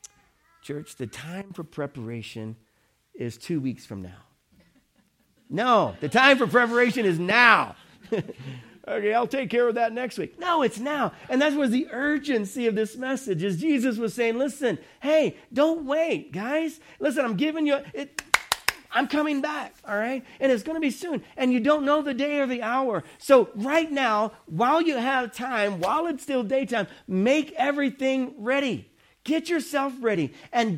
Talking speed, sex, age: 170 wpm, male, 50-69